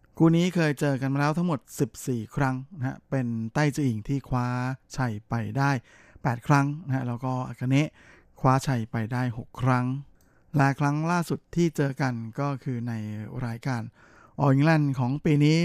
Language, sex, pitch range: Thai, male, 120-140 Hz